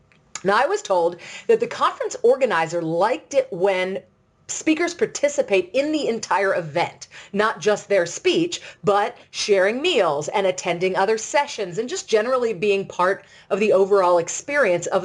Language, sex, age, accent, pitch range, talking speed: English, female, 30-49, American, 180-265 Hz, 150 wpm